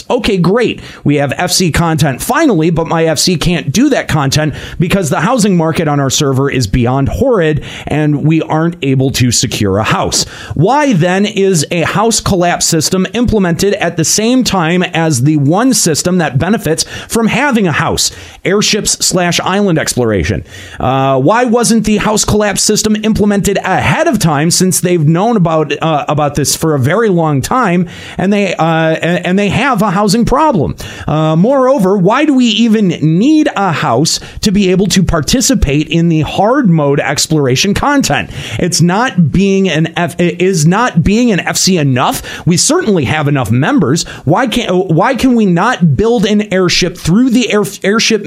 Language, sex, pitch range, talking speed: English, male, 150-205 Hz, 175 wpm